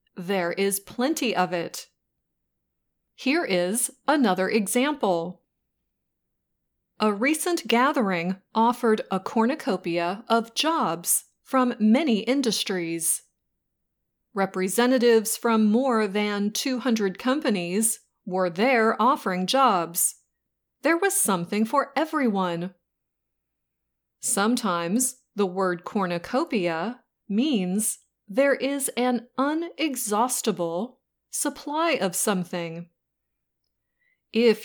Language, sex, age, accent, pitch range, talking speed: English, female, 30-49, American, 185-255 Hz, 85 wpm